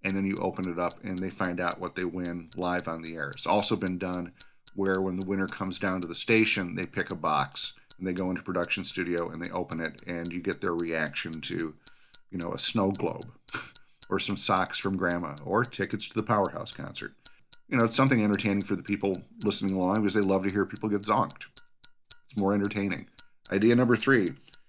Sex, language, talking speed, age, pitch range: male, English, 220 wpm, 40-59, 90-105 Hz